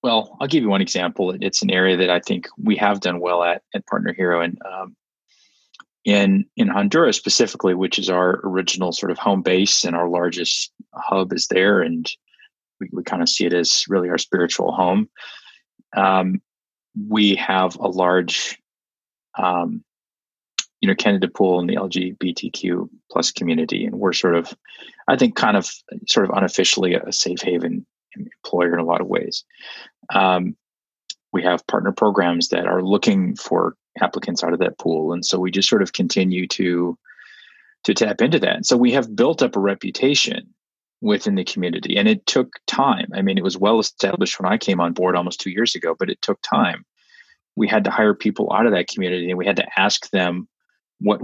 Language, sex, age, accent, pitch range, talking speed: English, male, 30-49, American, 90-105 Hz, 190 wpm